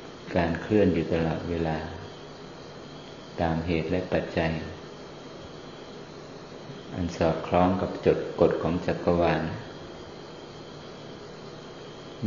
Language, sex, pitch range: Thai, male, 80-90 Hz